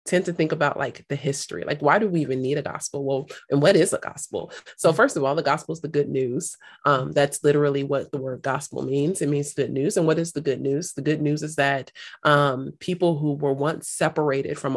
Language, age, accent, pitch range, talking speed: English, 30-49, American, 135-150 Hz, 250 wpm